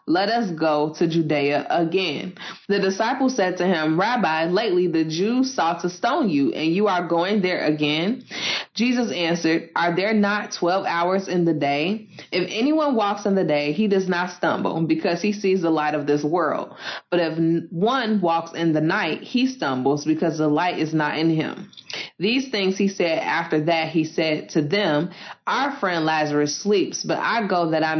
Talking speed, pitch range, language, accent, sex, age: 190 wpm, 155-205 Hz, English, American, female, 20-39